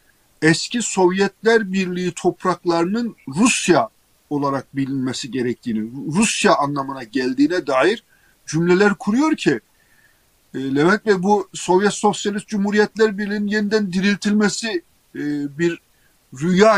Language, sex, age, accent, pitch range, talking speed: Turkish, male, 50-69, native, 140-195 Hz, 100 wpm